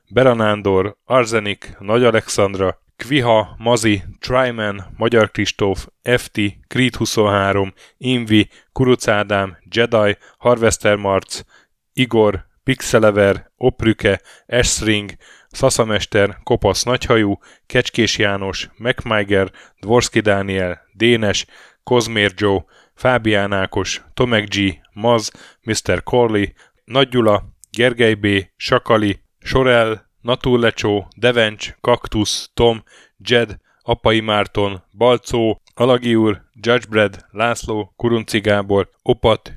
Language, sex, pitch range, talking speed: Hungarian, male, 100-120 Hz, 90 wpm